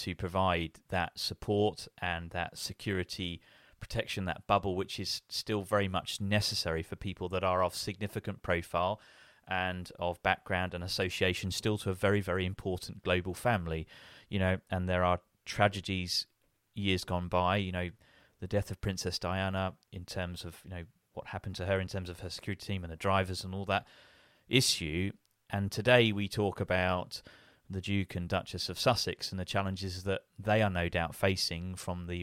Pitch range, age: 90-105 Hz, 30-49